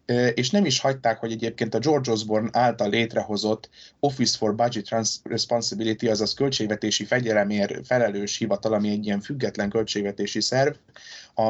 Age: 20-39